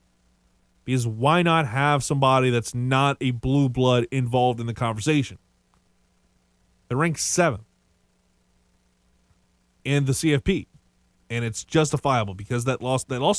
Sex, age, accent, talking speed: male, 20-39, American, 125 wpm